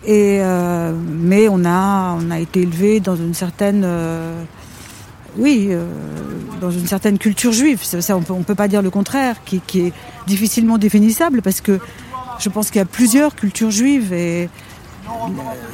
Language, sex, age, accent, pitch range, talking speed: French, female, 50-69, French, 185-220 Hz, 180 wpm